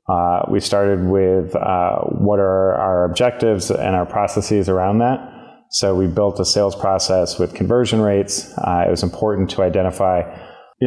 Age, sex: 30-49, male